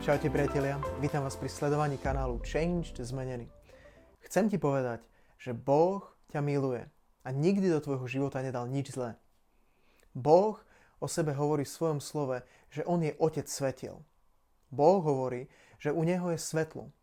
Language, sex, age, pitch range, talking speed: Slovak, male, 20-39, 130-155 Hz, 150 wpm